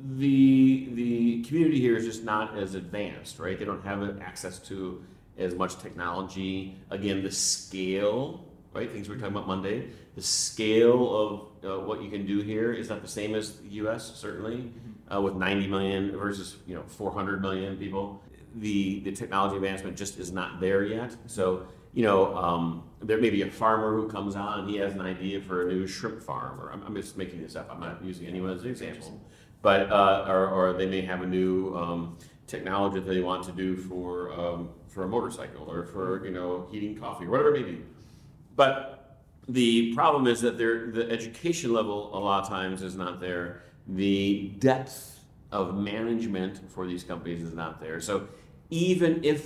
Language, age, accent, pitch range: English, 40-59, American, 95-115 Hz